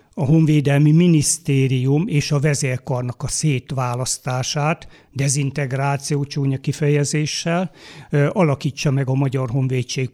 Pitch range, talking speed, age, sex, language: 135-155 Hz, 95 wpm, 60-79, male, Hungarian